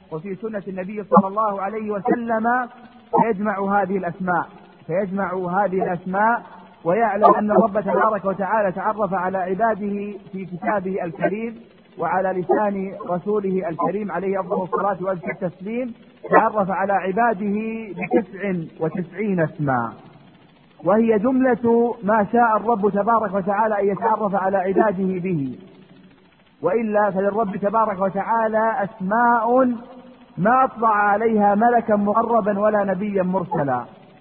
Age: 40-59